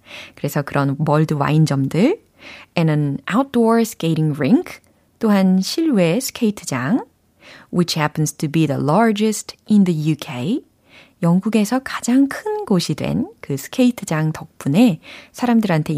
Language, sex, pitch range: Korean, female, 150-220 Hz